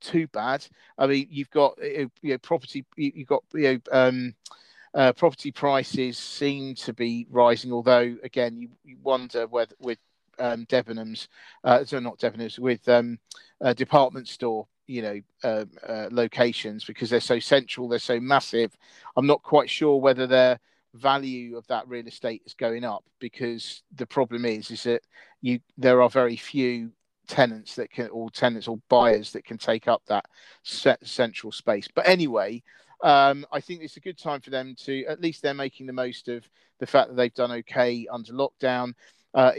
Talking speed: 180 wpm